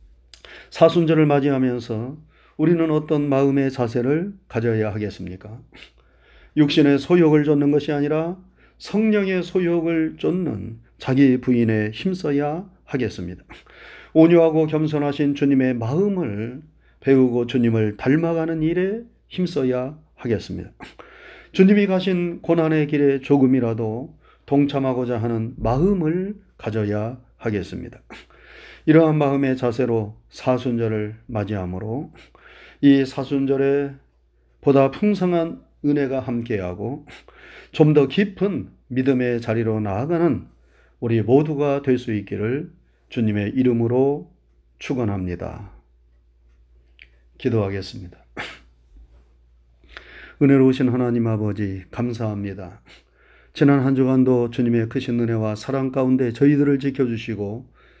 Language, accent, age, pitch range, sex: Korean, native, 40-59, 110-150 Hz, male